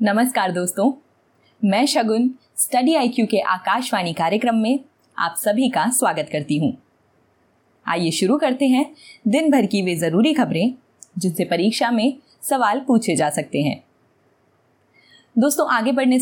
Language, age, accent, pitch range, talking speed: Hindi, 20-39, native, 195-275 Hz, 135 wpm